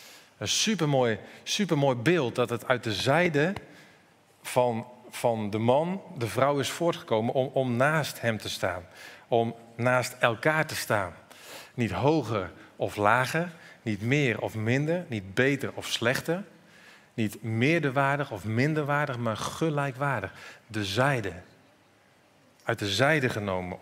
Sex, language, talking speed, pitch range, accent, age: male, Dutch, 130 wpm, 110-135 Hz, Dutch, 40-59